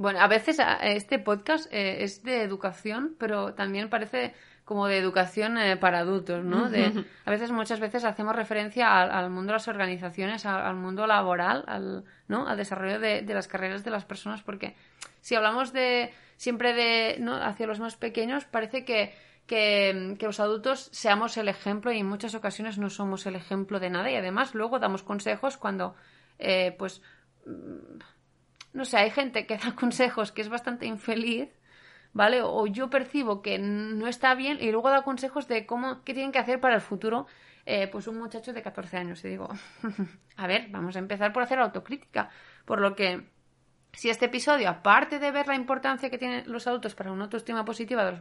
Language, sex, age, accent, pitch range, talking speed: Spanish, female, 30-49, Spanish, 200-245 Hz, 195 wpm